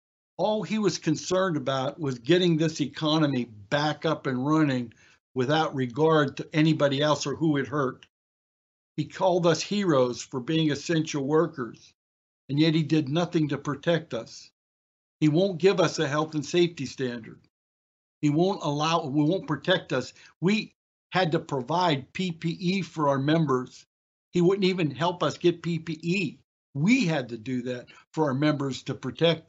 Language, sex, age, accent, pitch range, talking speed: English, male, 60-79, American, 130-175 Hz, 160 wpm